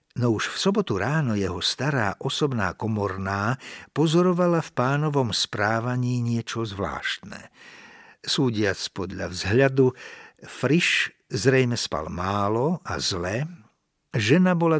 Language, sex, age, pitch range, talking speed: Slovak, male, 60-79, 100-135 Hz, 105 wpm